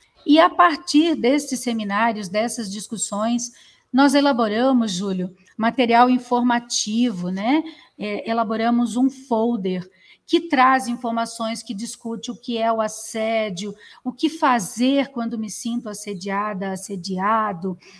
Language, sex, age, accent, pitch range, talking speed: Portuguese, female, 40-59, Brazilian, 210-255 Hz, 115 wpm